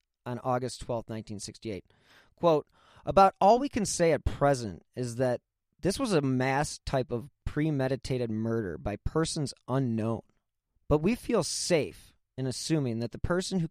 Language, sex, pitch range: English, male, 110-140 Hz